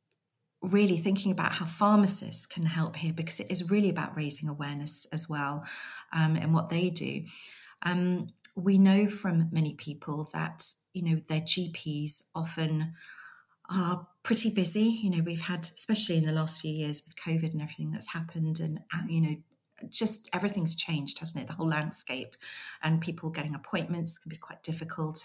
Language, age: English, 40-59